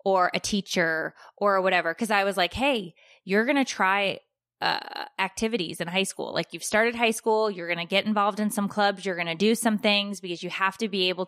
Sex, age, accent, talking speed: female, 20-39, American, 235 wpm